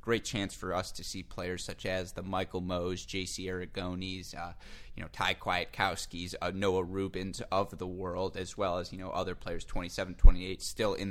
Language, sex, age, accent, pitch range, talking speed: English, male, 20-39, American, 90-100 Hz, 195 wpm